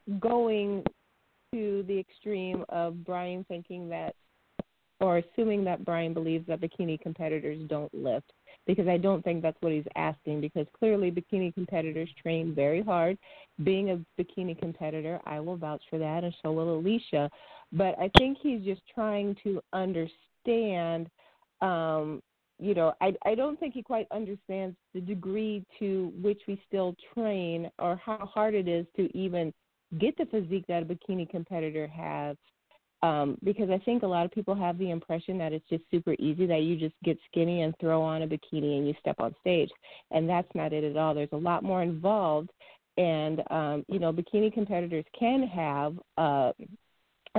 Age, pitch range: 40-59, 160-195 Hz